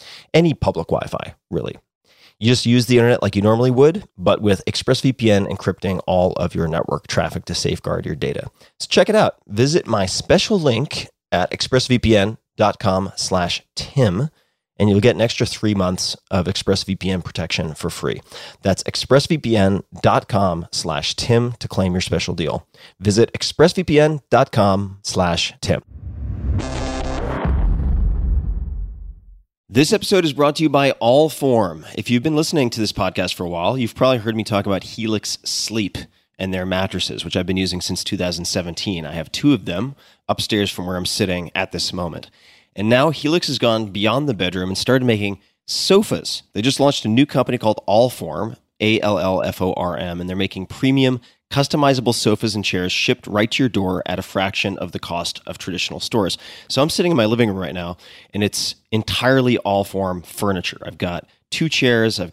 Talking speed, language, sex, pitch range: 165 wpm, English, male, 90-125 Hz